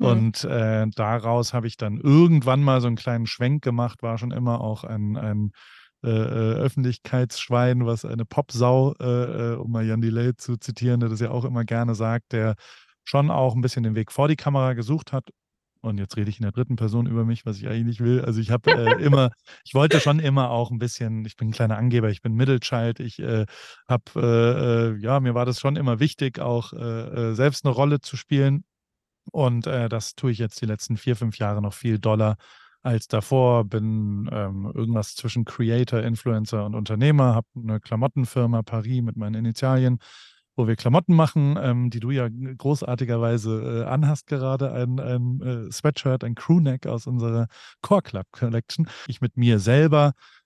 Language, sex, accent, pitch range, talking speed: German, male, German, 115-130 Hz, 190 wpm